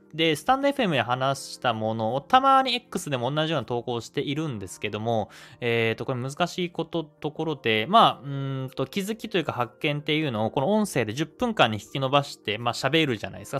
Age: 20-39